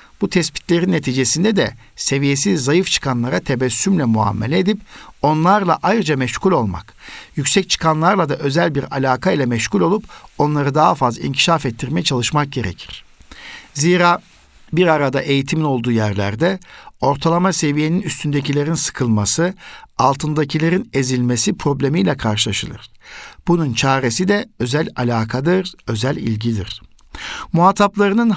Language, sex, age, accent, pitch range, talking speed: Turkish, male, 60-79, native, 125-170 Hz, 110 wpm